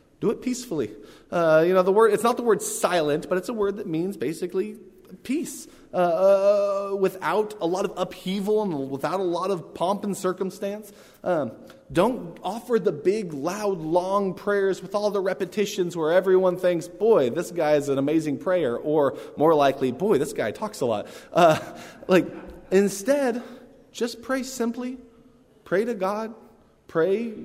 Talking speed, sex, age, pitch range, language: 165 wpm, male, 20-39, 165-215 Hz, English